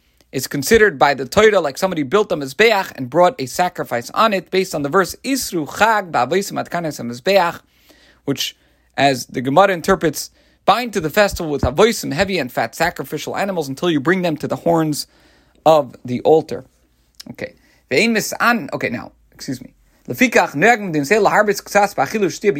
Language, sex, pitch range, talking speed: English, male, 140-200 Hz, 135 wpm